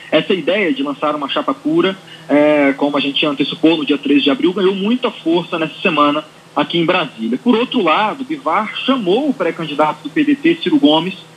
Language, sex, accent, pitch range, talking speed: Portuguese, male, Brazilian, 160-245 Hz, 190 wpm